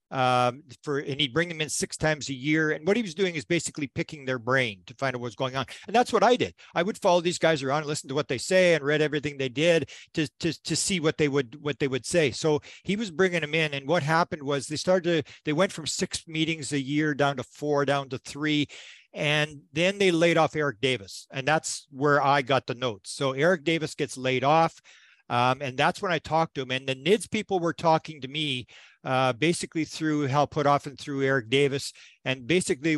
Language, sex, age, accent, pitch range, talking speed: English, male, 50-69, American, 135-160 Hz, 245 wpm